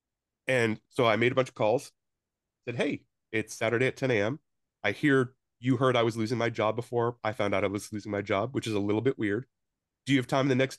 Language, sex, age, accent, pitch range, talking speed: English, male, 30-49, American, 100-125 Hz, 250 wpm